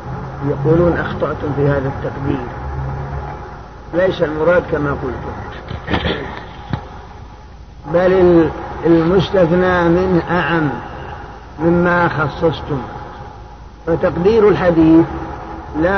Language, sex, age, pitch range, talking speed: Arabic, male, 50-69, 140-175 Hz, 70 wpm